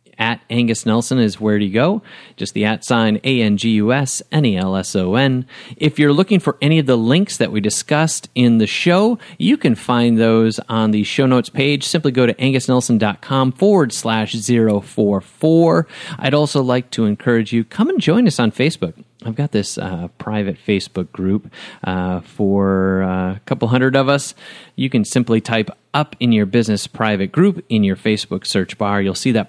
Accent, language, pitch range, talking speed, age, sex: American, English, 105-160 Hz, 180 wpm, 30-49, male